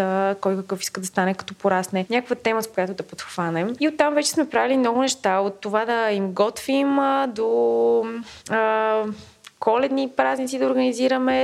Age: 20-39